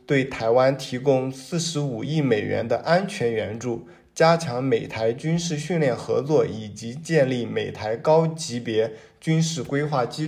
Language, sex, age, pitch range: Chinese, male, 20-39, 125-160 Hz